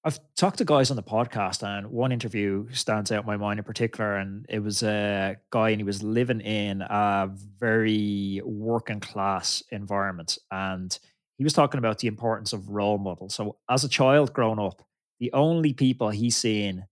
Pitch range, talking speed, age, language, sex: 105-130 Hz, 190 wpm, 20-39, English, male